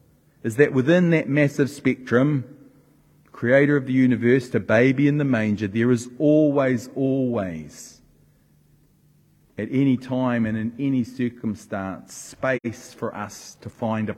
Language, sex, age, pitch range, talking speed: English, male, 40-59, 105-145 Hz, 135 wpm